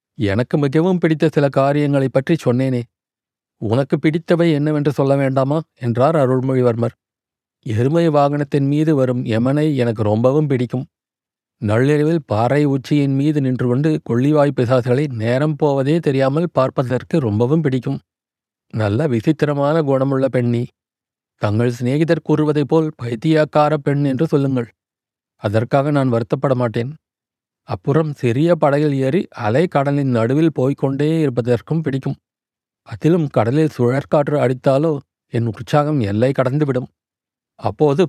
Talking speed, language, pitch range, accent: 110 wpm, Tamil, 125-155 Hz, native